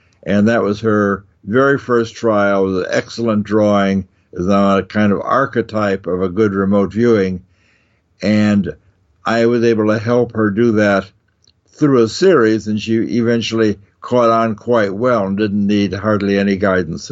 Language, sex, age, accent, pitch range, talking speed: English, male, 60-79, American, 100-115 Hz, 160 wpm